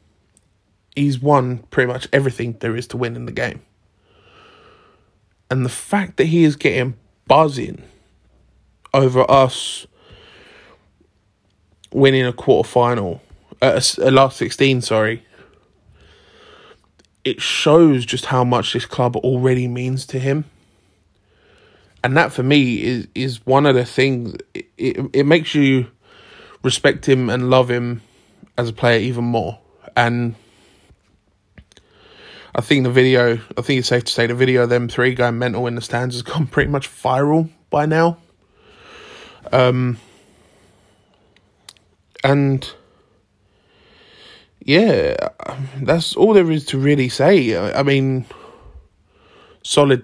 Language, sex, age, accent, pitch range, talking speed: English, male, 20-39, British, 120-140 Hz, 125 wpm